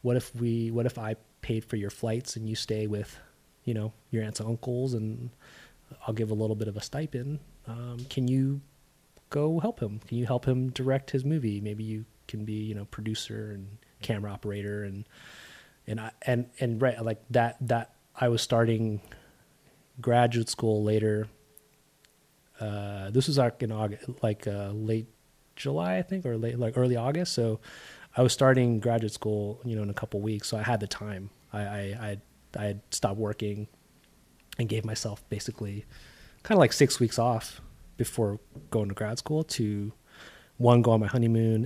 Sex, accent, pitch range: male, American, 105-125 Hz